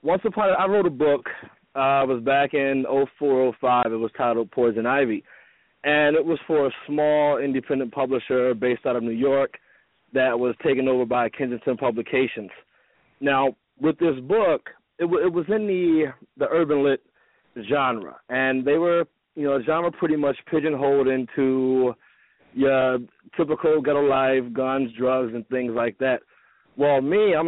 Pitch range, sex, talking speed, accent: 125-150 Hz, male, 165 wpm, American